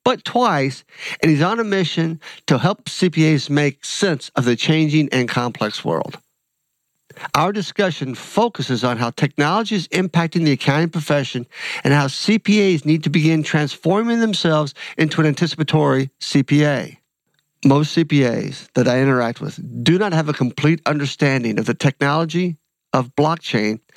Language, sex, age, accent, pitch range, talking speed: English, male, 50-69, American, 135-175 Hz, 145 wpm